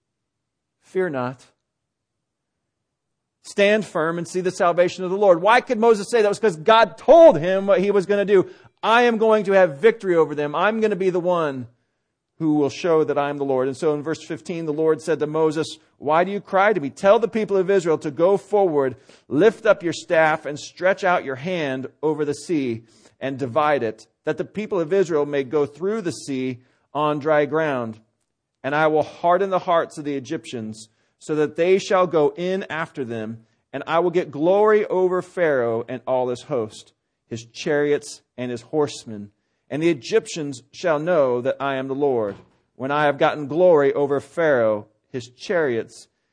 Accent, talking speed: American, 195 wpm